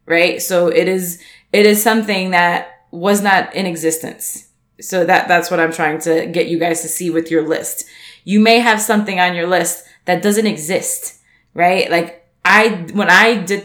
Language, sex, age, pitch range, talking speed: English, female, 20-39, 165-215 Hz, 190 wpm